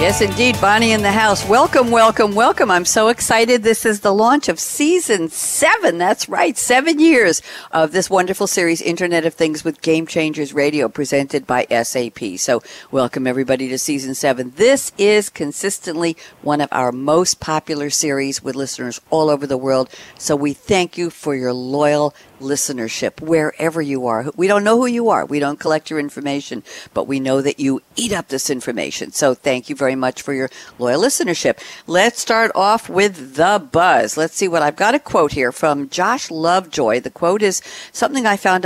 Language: English